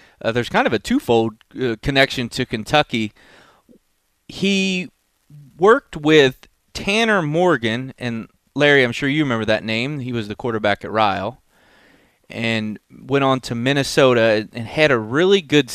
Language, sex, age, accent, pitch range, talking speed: English, male, 30-49, American, 115-145 Hz, 150 wpm